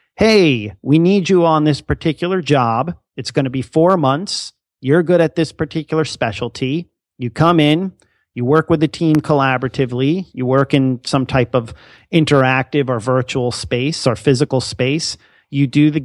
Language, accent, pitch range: English, American, 125-155 Hz